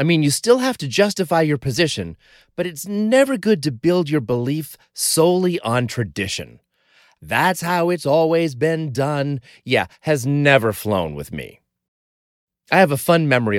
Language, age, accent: English, 30-49, American